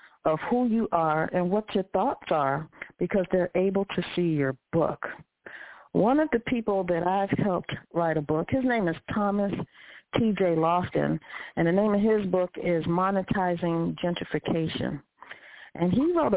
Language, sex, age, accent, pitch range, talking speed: English, female, 50-69, American, 165-210 Hz, 160 wpm